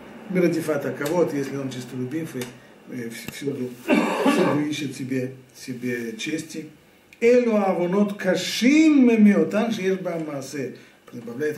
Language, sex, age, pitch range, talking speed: Russian, male, 50-69, 125-155 Hz, 65 wpm